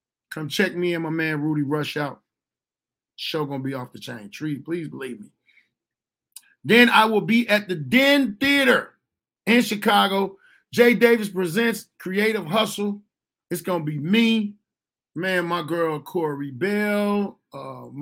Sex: male